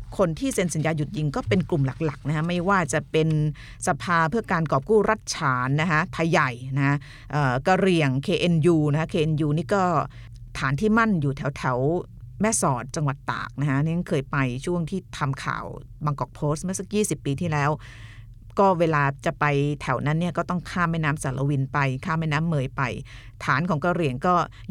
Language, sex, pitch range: Thai, female, 135-180 Hz